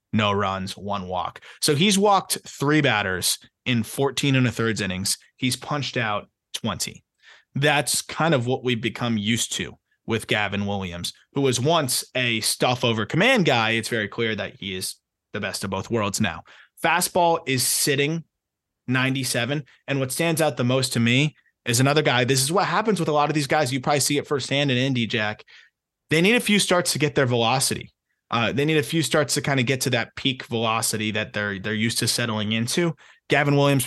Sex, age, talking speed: male, 20-39, 205 wpm